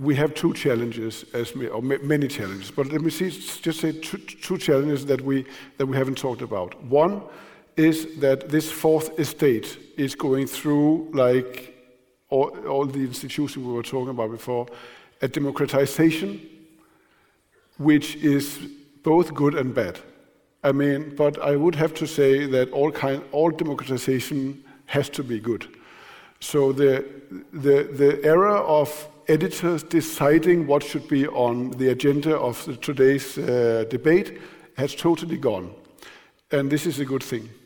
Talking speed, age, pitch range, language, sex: 150 wpm, 50-69, 130-155 Hz, Danish, male